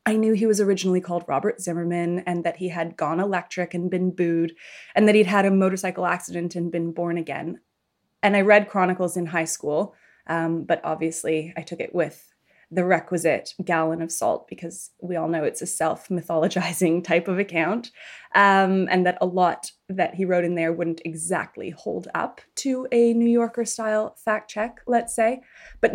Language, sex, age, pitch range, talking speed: English, female, 20-39, 175-215 Hz, 185 wpm